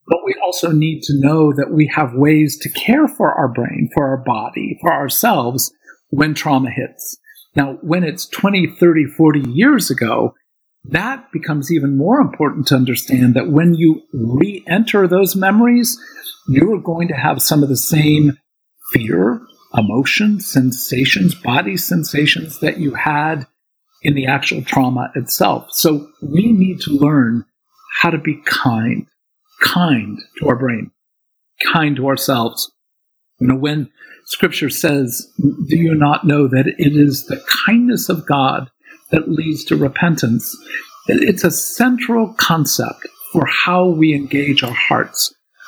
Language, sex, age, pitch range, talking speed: English, male, 50-69, 140-180 Hz, 150 wpm